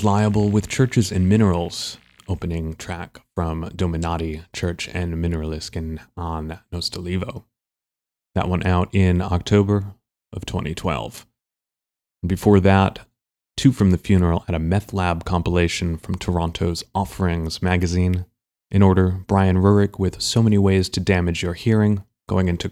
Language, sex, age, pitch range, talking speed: English, male, 30-49, 90-105 Hz, 135 wpm